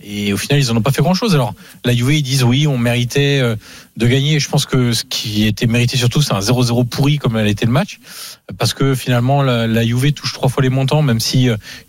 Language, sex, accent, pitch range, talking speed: French, male, French, 115-140 Hz, 250 wpm